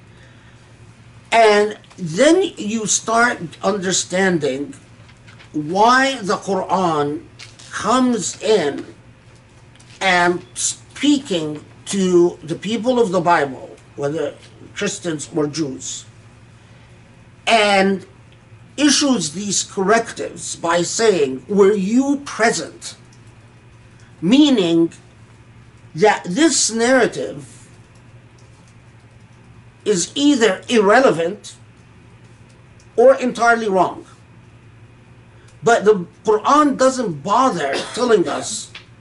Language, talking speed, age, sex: English, 75 wpm, 50-69, male